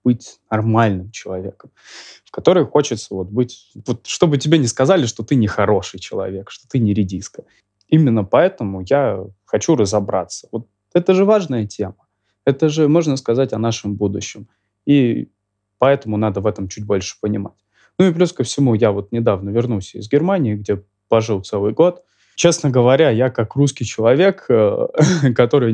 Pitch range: 105-135 Hz